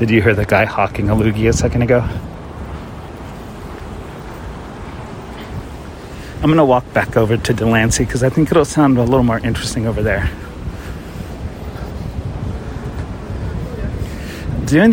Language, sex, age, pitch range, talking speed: English, male, 30-49, 100-135 Hz, 125 wpm